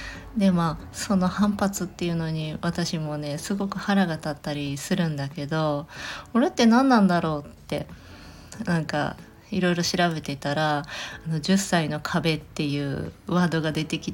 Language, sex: Japanese, female